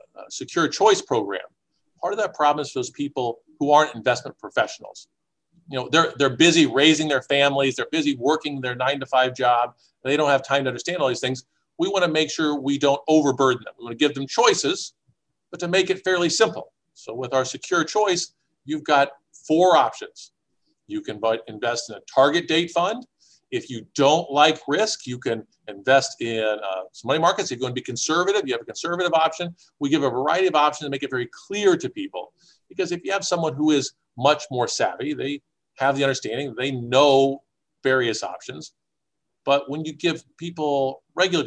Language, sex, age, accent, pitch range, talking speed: English, male, 50-69, American, 130-170 Hz, 200 wpm